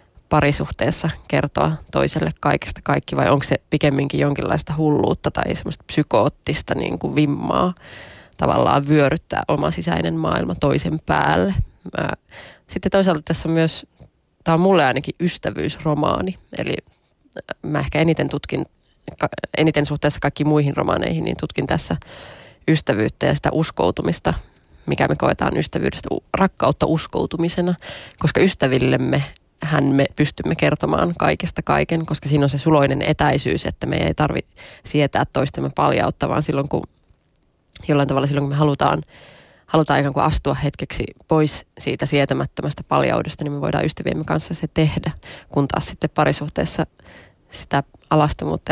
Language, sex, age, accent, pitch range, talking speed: Finnish, female, 20-39, native, 140-160 Hz, 135 wpm